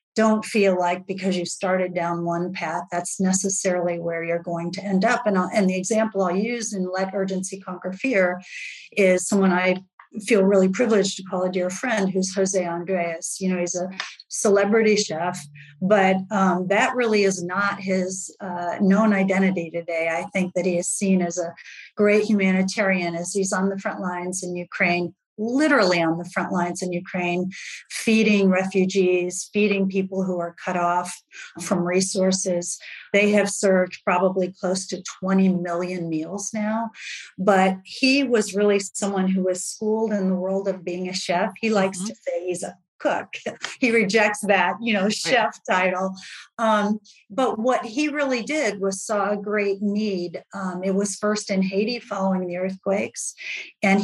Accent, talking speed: American, 170 wpm